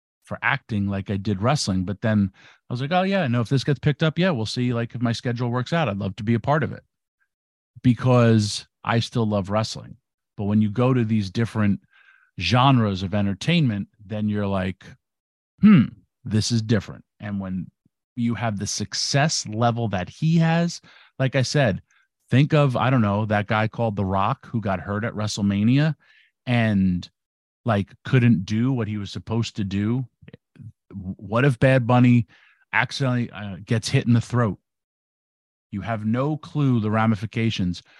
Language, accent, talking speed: English, American, 180 wpm